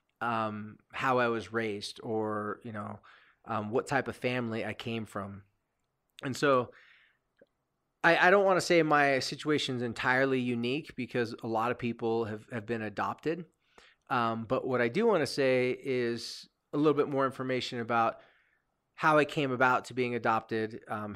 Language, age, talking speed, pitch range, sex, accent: English, 30-49, 175 wpm, 115-150 Hz, male, American